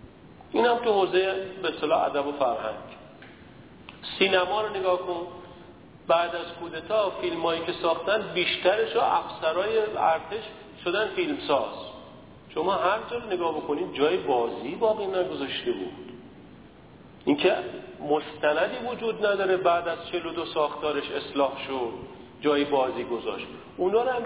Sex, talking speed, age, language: male, 130 wpm, 50-69, Persian